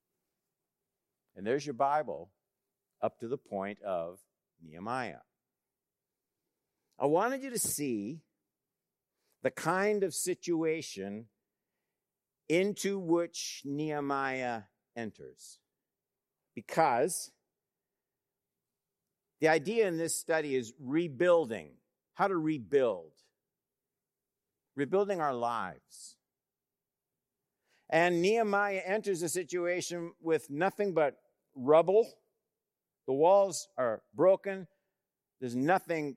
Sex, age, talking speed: male, 50-69, 85 wpm